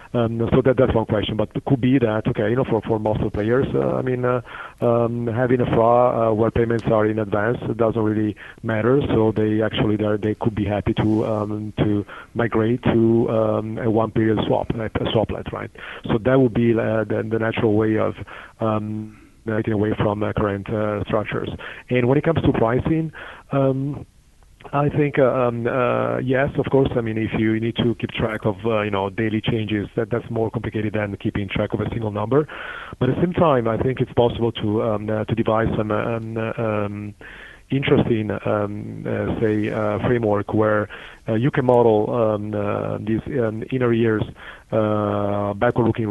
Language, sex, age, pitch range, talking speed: English, male, 30-49, 105-120 Hz, 195 wpm